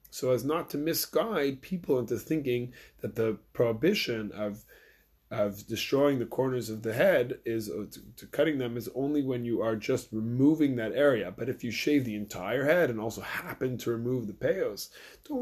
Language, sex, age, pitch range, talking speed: English, male, 20-39, 105-130 Hz, 185 wpm